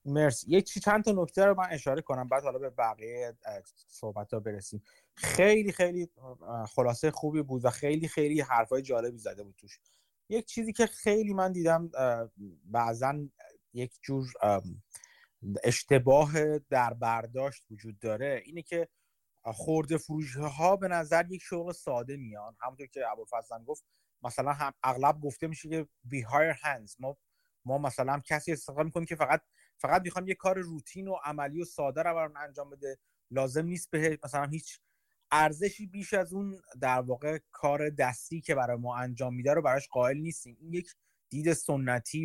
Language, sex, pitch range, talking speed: Persian, male, 125-170 Hz, 160 wpm